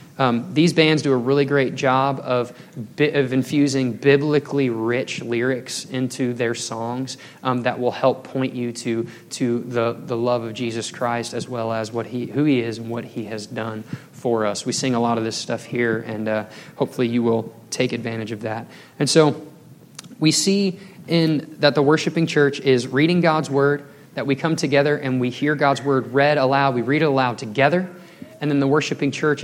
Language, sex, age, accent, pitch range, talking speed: English, male, 20-39, American, 120-145 Hz, 200 wpm